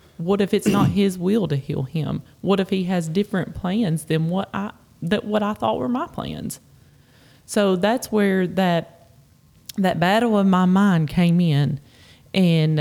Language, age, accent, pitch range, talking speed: English, 20-39, American, 165-200 Hz, 175 wpm